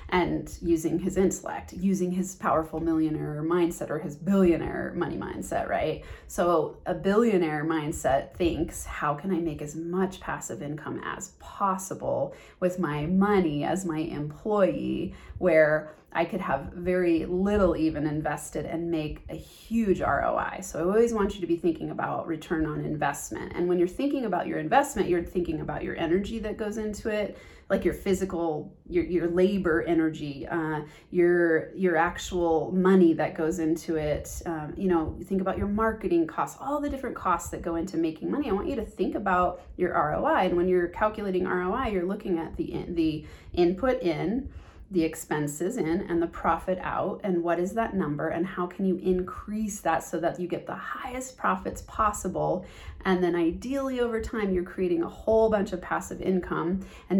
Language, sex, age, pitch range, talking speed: English, female, 30-49, 165-190 Hz, 180 wpm